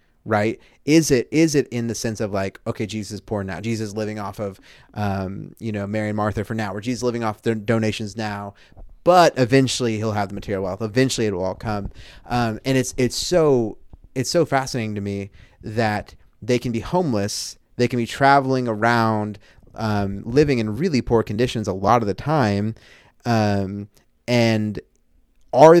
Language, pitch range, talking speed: English, 105-125 Hz, 190 wpm